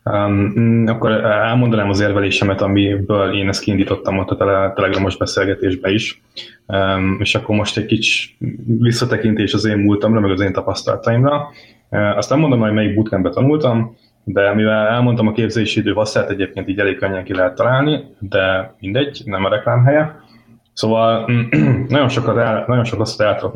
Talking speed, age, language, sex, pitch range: 160 wpm, 20-39, Hungarian, male, 100-115 Hz